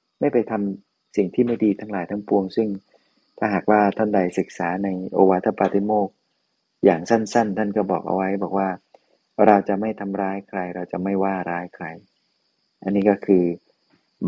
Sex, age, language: male, 20-39, Thai